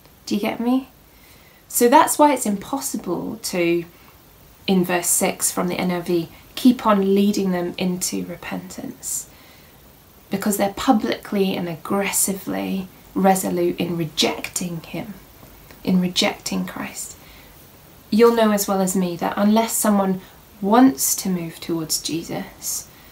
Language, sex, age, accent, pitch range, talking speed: English, female, 20-39, British, 175-220 Hz, 125 wpm